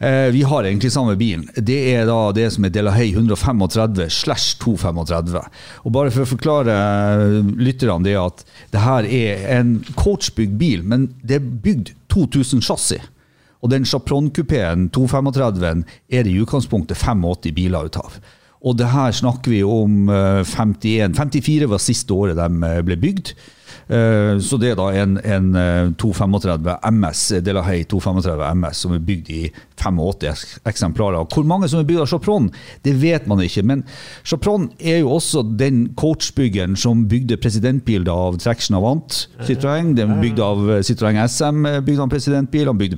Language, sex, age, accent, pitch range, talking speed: English, male, 50-69, Swedish, 95-130 Hz, 165 wpm